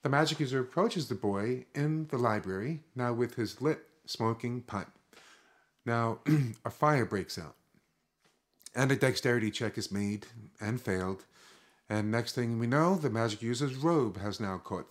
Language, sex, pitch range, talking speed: English, male, 105-135 Hz, 160 wpm